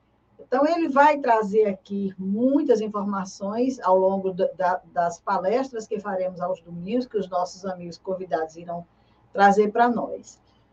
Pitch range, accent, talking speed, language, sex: 190-240 Hz, Brazilian, 135 wpm, Portuguese, female